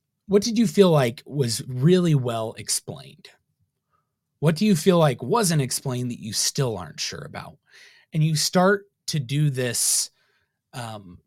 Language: English